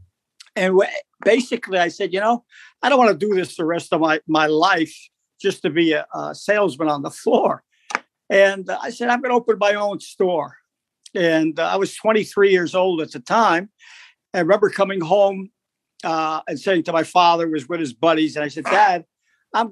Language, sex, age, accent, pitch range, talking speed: English, male, 60-79, American, 165-220 Hz, 200 wpm